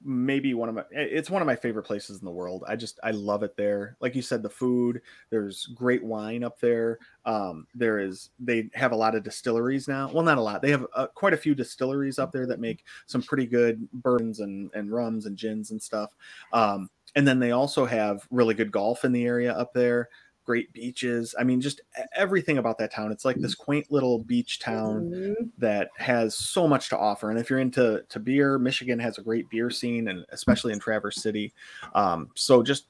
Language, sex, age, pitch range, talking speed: English, male, 30-49, 110-130 Hz, 220 wpm